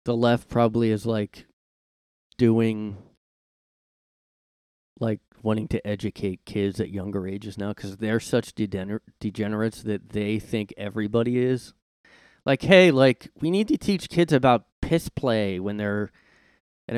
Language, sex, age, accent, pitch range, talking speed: English, male, 20-39, American, 100-135 Hz, 135 wpm